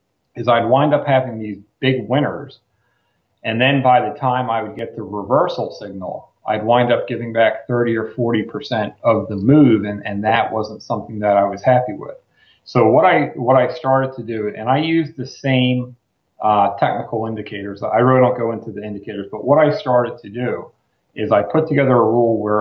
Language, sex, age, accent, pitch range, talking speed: English, male, 40-59, American, 110-130 Hz, 200 wpm